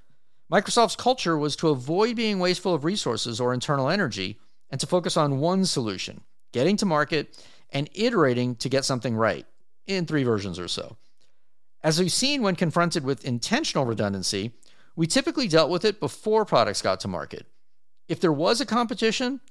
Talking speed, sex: 170 wpm, male